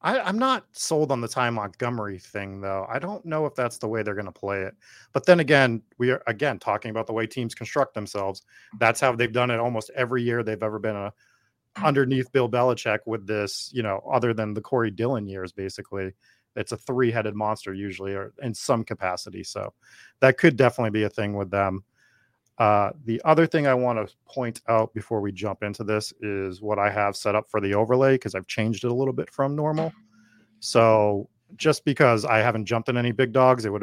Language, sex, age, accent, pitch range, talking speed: English, male, 30-49, American, 105-125 Hz, 215 wpm